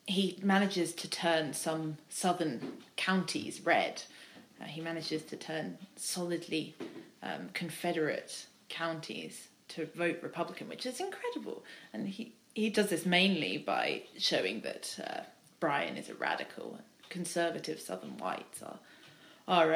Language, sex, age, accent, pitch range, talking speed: English, female, 20-39, British, 160-190 Hz, 130 wpm